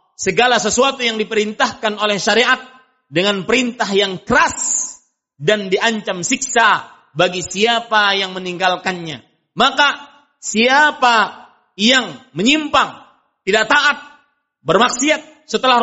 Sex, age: male, 40-59